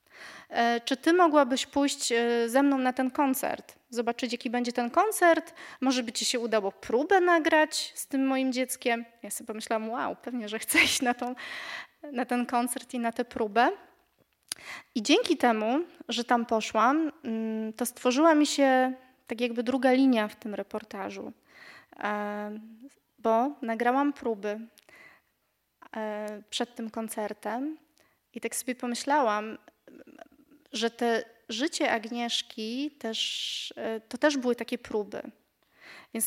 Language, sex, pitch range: Polish, female, 230-295 Hz